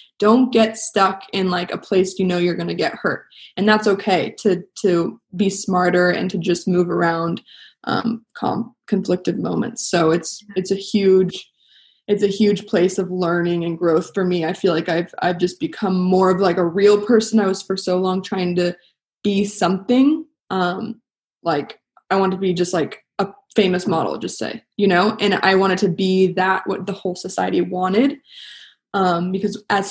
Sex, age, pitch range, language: female, 20-39, 180-200 Hz, English